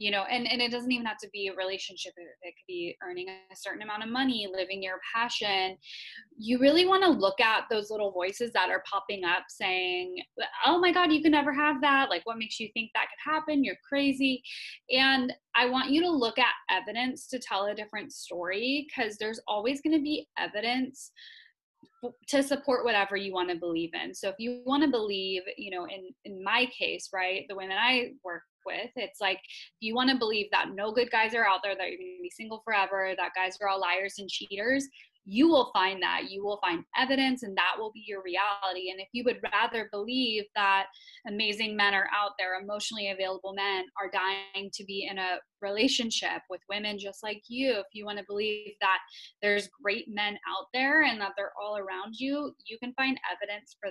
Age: 10-29